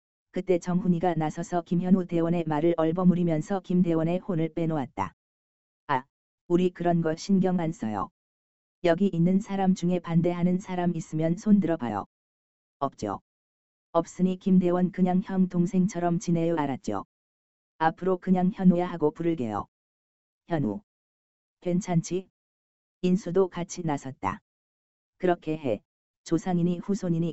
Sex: female